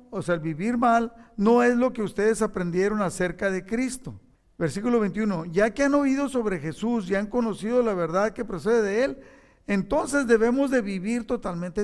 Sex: male